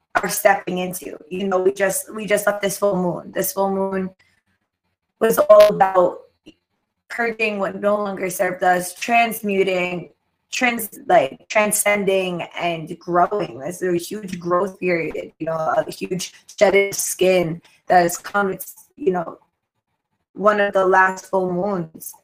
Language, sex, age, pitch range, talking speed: English, female, 20-39, 185-220 Hz, 145 wpm